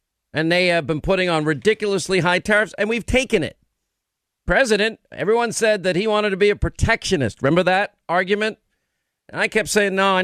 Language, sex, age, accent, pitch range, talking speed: English, male, 50-69, American, 150-190 Hz, 190 wpm